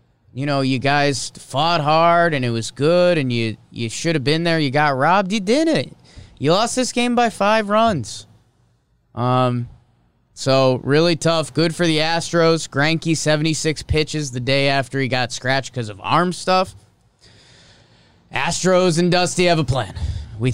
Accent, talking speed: American, 170 wpm